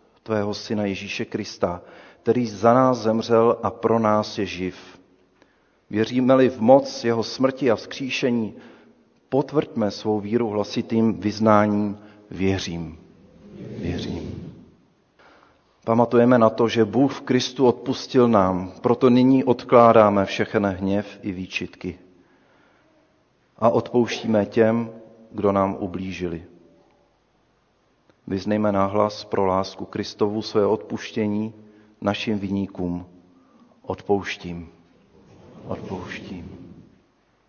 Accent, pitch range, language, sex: native, 100-125 Hz, Czech, male